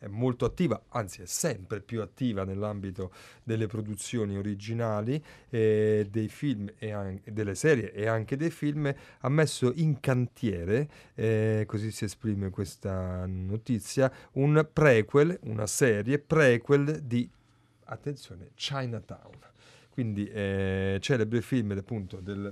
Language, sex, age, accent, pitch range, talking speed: Italian, male, 30-49, native, 105-130 Hz, 125 wpm